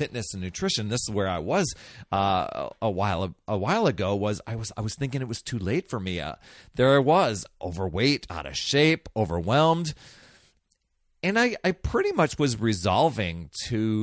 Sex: male